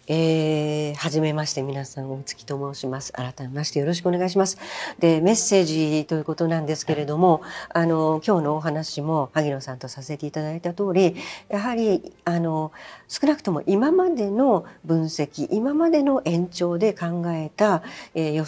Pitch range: 155-205 Hz